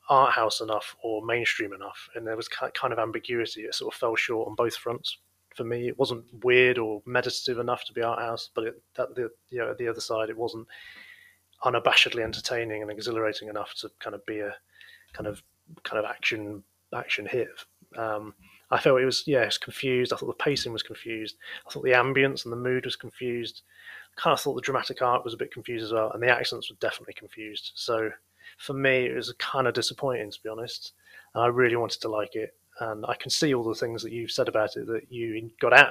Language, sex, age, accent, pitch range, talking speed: English, male, 20-39, British, 105-125 Hz, 225 wpm